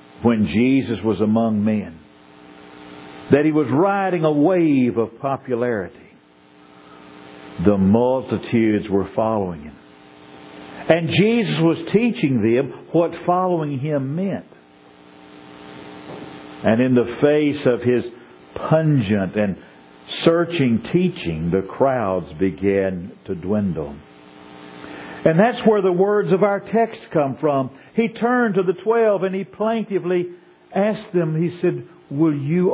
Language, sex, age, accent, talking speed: English, male, 60-79, American, 120 wpm